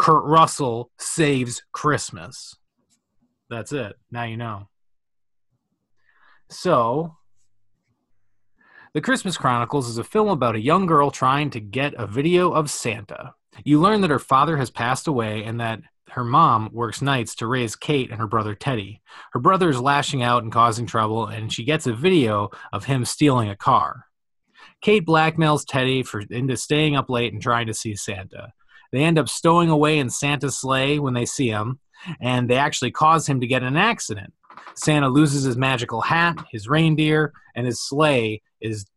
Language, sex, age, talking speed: English, male, 20-39, 170 wpm